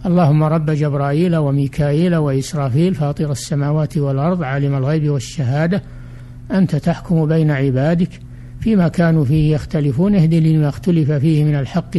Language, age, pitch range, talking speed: Arabic, 60-79, 140-180 Hz, 125 wpm